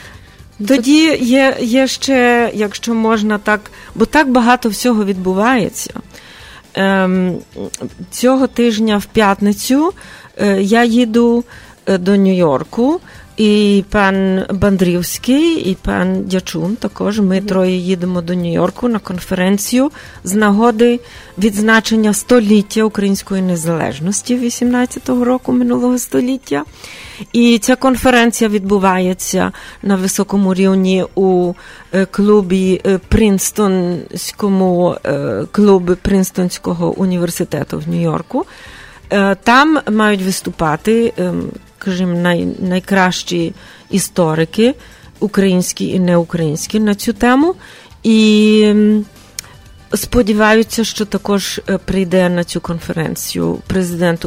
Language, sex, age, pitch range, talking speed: English, female, 30-49, 180-225 Hz, 90 wpm